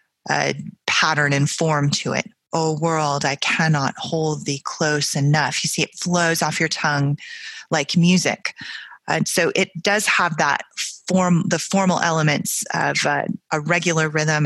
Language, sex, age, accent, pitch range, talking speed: English, female, 30-49, American, 150-175 Hz, 160 wpm